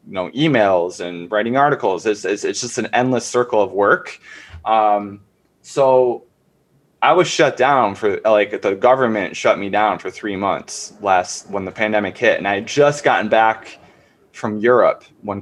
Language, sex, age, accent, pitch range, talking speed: English, male, 20-39, American, 100-125 Hz, 175 wpm